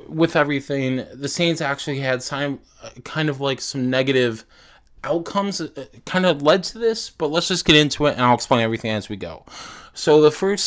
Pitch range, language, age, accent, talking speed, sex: 115-150 Hz, English, 20-39, American, 195 wpm, male